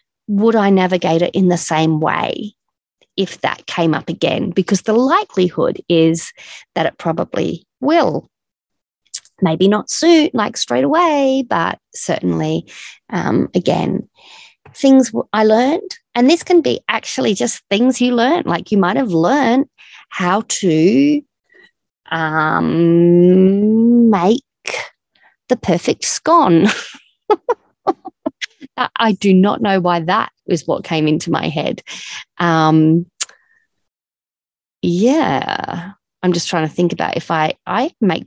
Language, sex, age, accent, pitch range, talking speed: English, female, 30-49, Australian, 170-255 Hz, 125 wpm